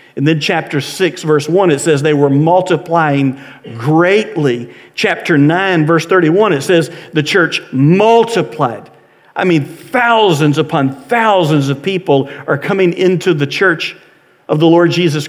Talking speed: 145 wpm